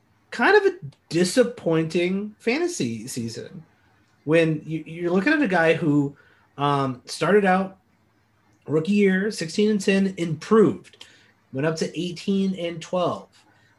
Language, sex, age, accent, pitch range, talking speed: English, male, 30-49, American, 125-180 Hz, 125 wpm